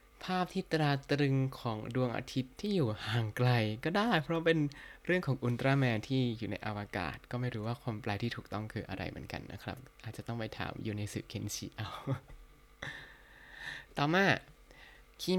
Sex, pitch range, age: male, 110-150 Hz, 20-39